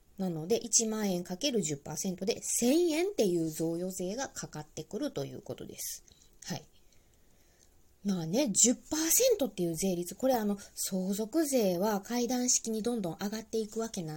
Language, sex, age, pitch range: Japanese, female, 20-39, 170-275 Hz